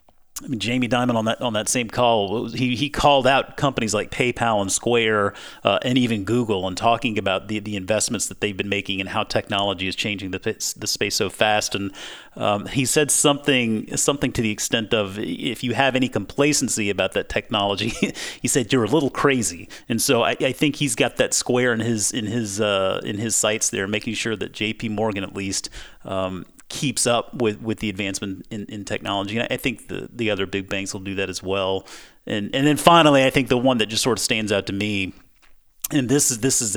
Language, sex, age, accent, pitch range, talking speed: English, male, 30-49, American, 100-125 Hz, 220 wpm